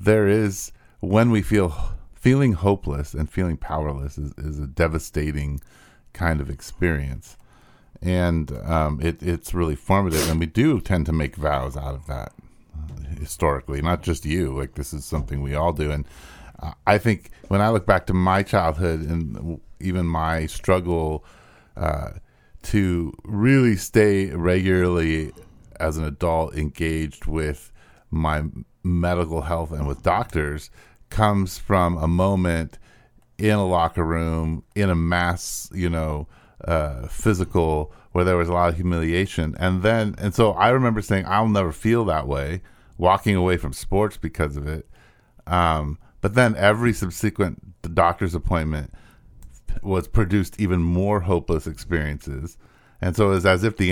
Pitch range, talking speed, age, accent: 75-100 Hz, 150 wpm, 30-49, American